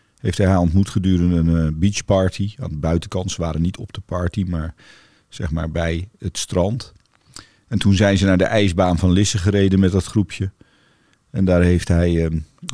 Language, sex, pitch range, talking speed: Dutch, male, 90-105 Hz, 195 wpm